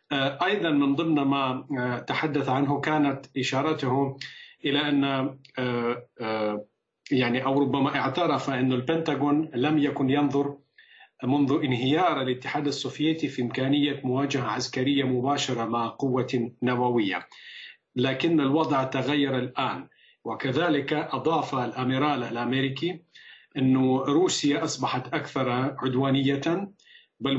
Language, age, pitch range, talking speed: Arabic, 40-59, 130-155 Hz, 100 wpm